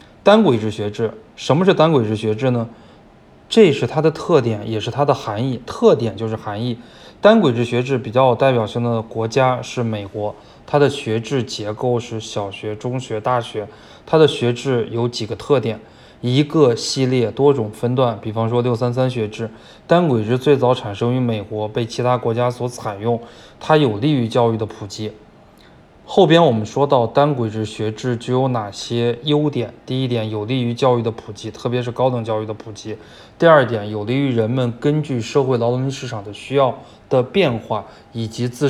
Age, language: 20-39, Chinese